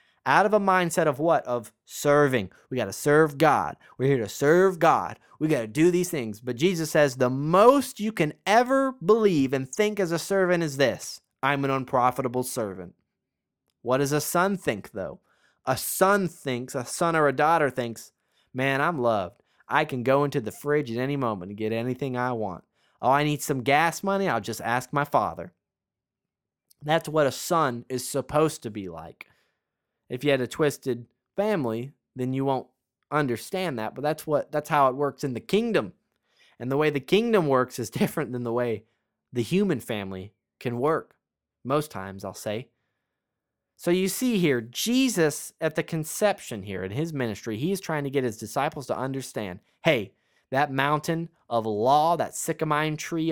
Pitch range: 125-170 Hz